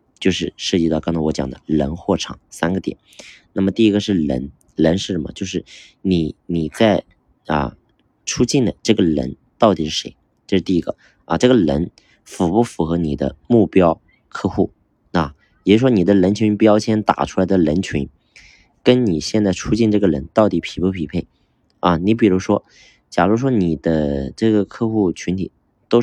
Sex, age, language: male, 20-39, Chinese